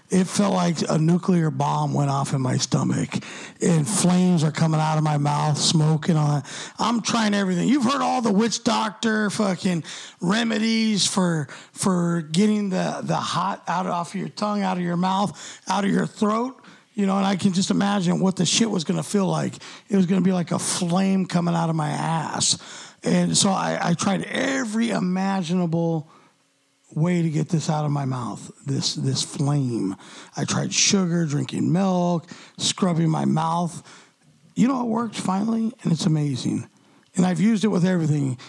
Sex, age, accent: male, 50-69, American